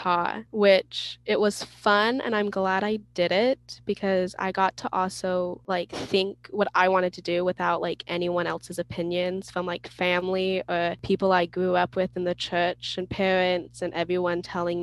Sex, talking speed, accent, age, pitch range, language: female, 180 wpm, American, 10-29, 175-195 Hz, English